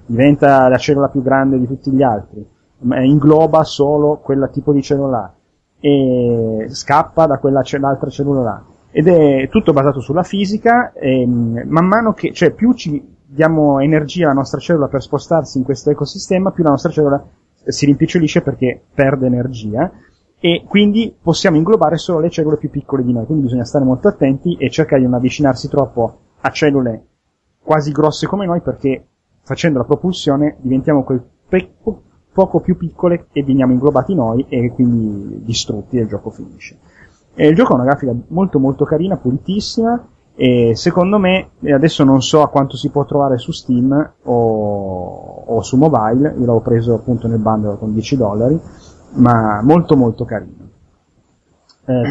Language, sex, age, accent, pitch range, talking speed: Italian, male, 30-49, native, 125-160 Hz, 165 wpm